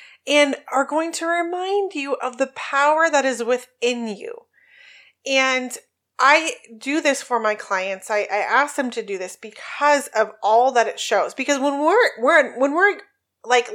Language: English